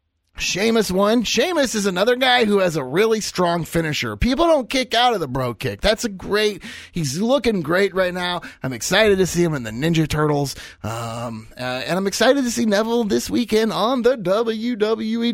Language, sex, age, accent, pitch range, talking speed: English, male, 30-49, American, 130-205 Hz, 200 wpm